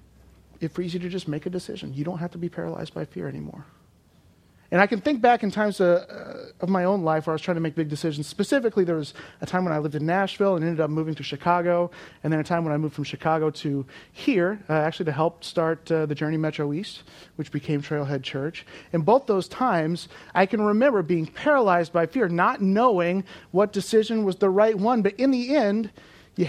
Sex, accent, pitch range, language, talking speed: male, American, 145-185 Hz, English, 230 wpm